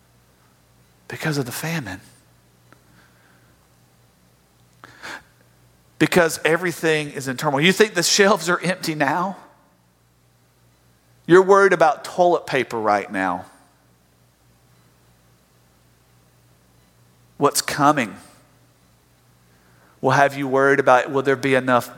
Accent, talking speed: American, 90 wpm